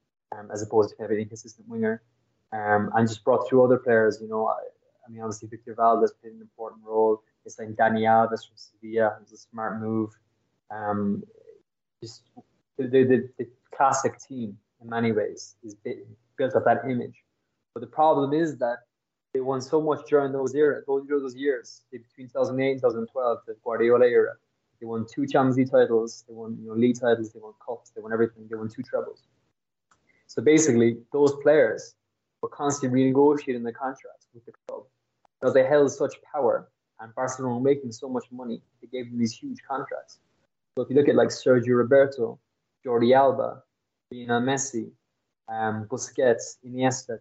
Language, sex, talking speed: English, male, 185 wpm